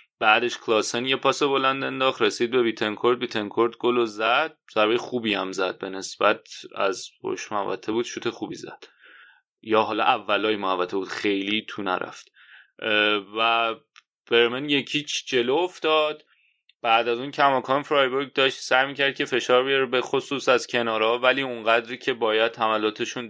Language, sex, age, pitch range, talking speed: Persian, male, 30-49, 110-135 Hz, 155 wpm